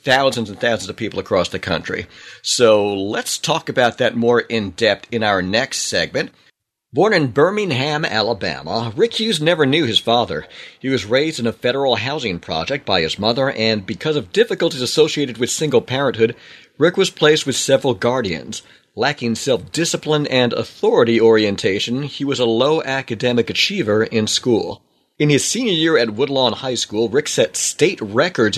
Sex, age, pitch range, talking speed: male, 50-69, 115-145 Hz, 170 wpm